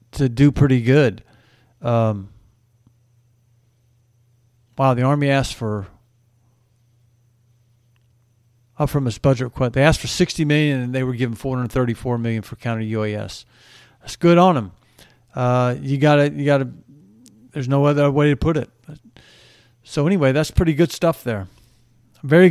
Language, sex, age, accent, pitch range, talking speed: English, male, 50-69, American, 120-140 Hz, 155 wpm